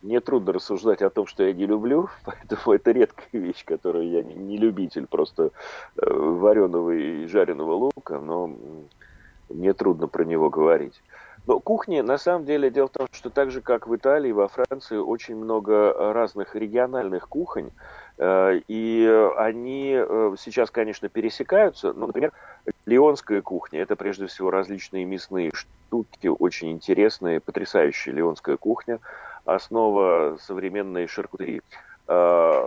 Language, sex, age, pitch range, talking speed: Russian, male, 40-59, 95-145 Hz, 130 wpm